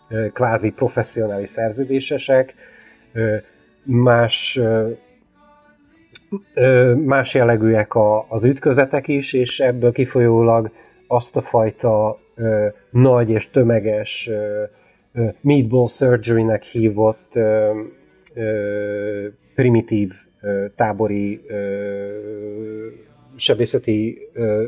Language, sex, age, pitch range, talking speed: Hungarian, male, 30-49, 110-130 Hz, 60 wpm